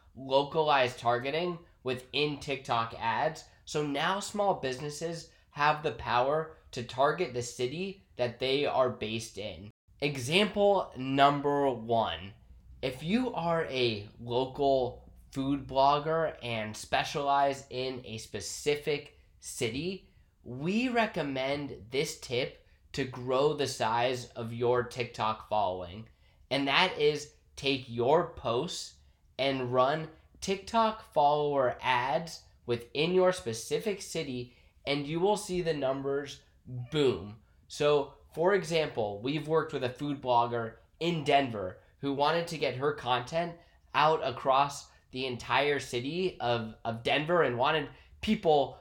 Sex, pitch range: male, 120-155 Hz